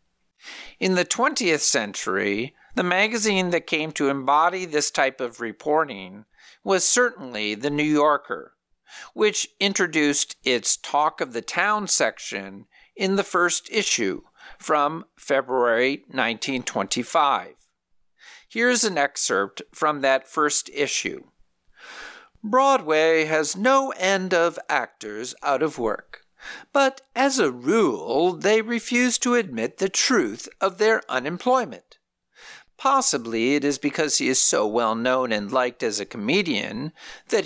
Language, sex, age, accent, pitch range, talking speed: English, male, 50-69, American, 135-215 Hz, 125 wpm